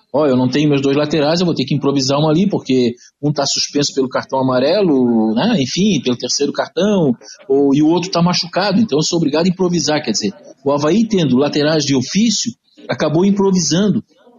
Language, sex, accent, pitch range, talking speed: Portuguese, male, Brazilian, 140-185 Hz, 205 wpm